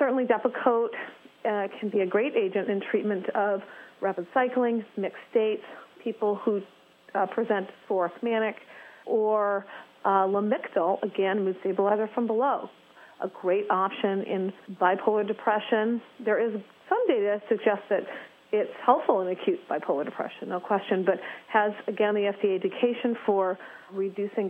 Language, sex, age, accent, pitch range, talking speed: English, female, 40-59, American, 195-230 Hz, 140 wpm